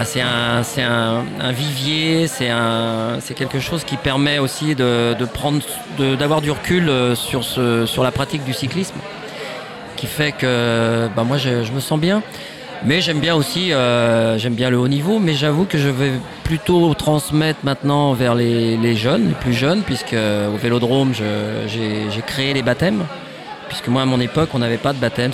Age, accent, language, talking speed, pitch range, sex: 30-49, French, French, 195 wpm, 120-155 Hz, male